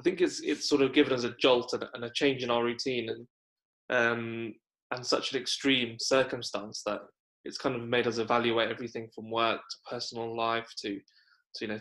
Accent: British